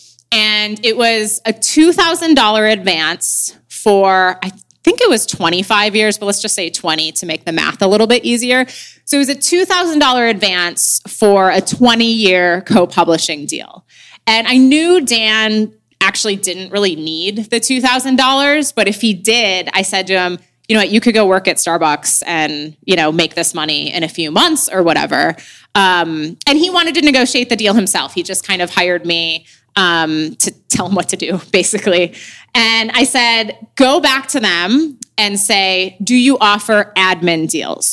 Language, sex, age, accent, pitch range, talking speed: English, female, 20-39, American, 180-245 Hz, 180 wpm